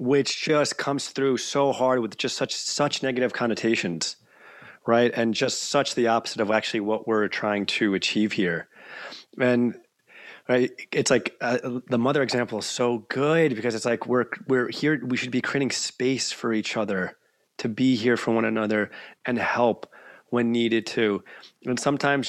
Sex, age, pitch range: male, 30-49, 115-145 Hz